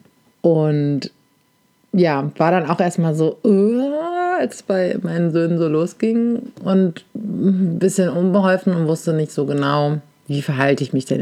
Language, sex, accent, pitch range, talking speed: German, female, German, 150-180 Hz, 155 wpm